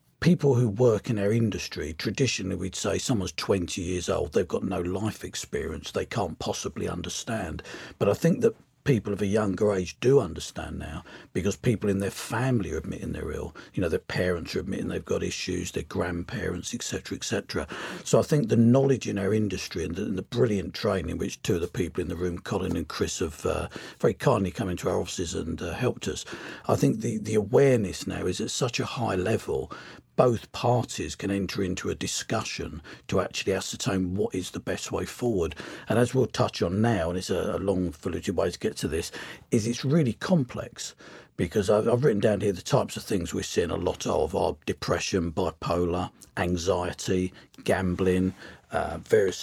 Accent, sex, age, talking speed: British, male, 50-69, 200 wpm